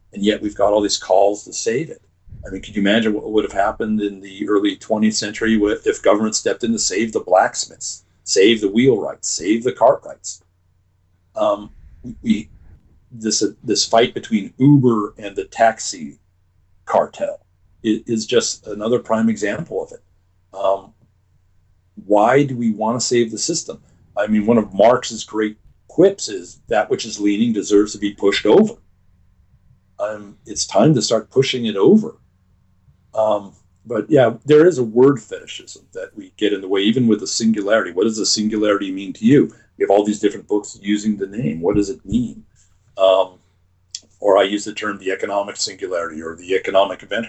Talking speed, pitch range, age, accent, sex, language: 185 wpm, 90-110 Hz, 50-69, American, male, English